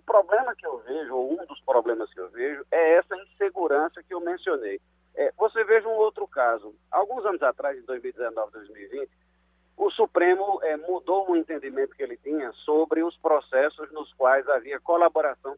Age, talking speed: 50-69, 175 wpm